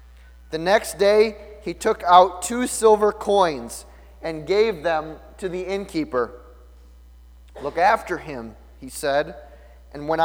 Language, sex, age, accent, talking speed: English, male, 30-49, American, 130 wpm